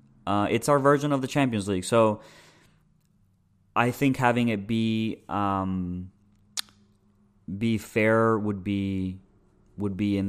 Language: English